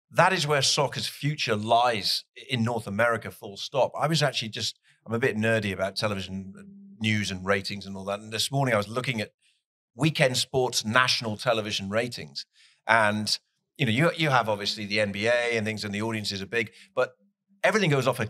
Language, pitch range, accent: English, 105-140 Hz, British